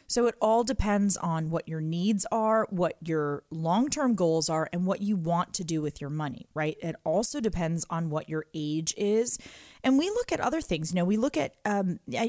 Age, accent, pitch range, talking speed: 30-49, American, 165-215 Hz, 225 wpm